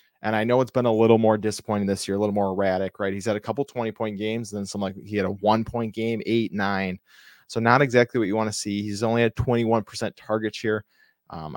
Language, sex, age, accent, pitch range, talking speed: English, male, 20-39, American, 100-115 Hz, 255 wpm